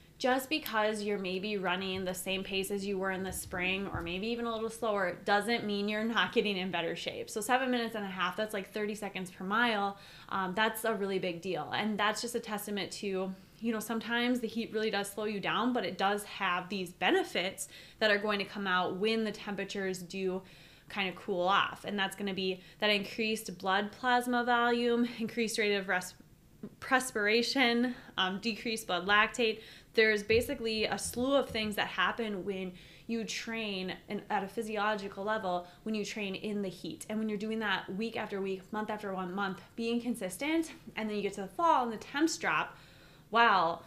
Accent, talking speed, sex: American, 200 wpm, female